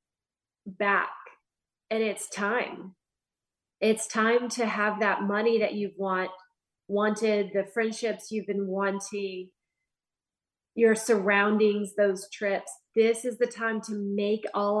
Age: 30-49